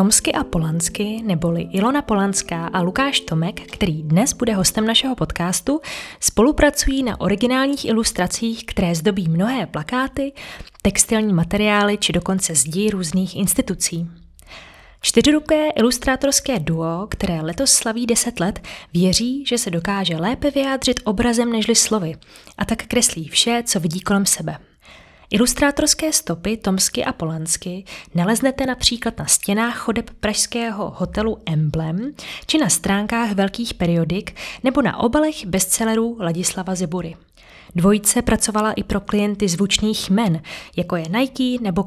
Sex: female